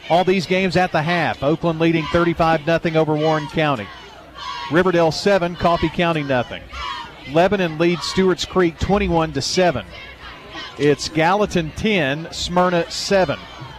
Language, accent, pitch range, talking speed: English, American, 145-185 Hz, 120 wpm